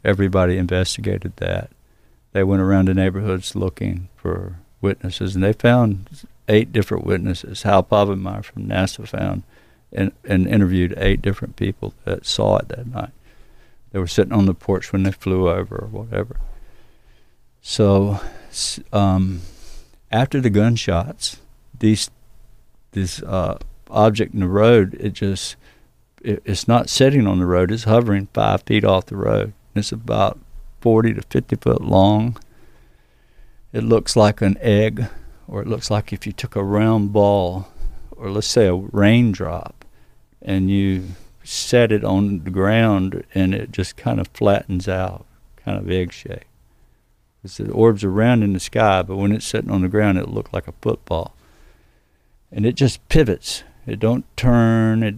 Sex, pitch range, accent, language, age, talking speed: male, 95-110 Hz, American, English, 50-69, 155 wpm